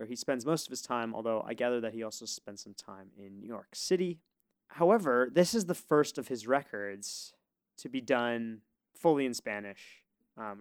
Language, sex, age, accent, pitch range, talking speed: English, male, 20-39, American, 110-150 Hz, 190 wpm